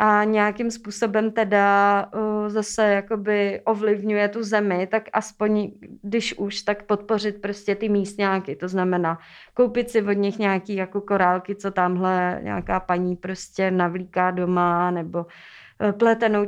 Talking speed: 130 wpm